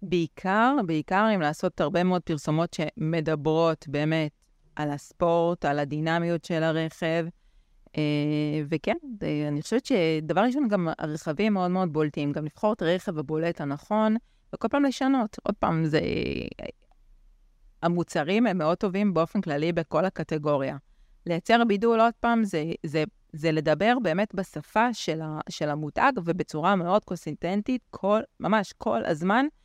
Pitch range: 155-190 Hz